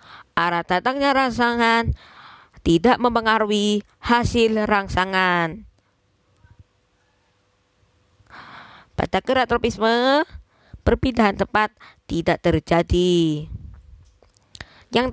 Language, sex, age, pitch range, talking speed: Indonesian, female, 20-39, 155-235 Hz, 60 wpm